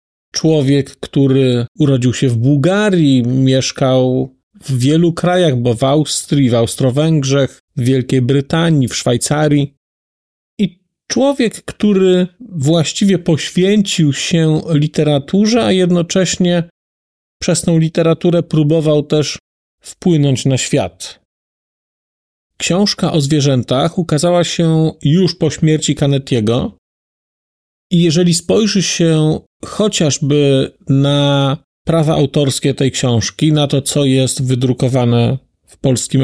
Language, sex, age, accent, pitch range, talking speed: Polish, male, 40-59, native, 135-175 Hz, 105 wpm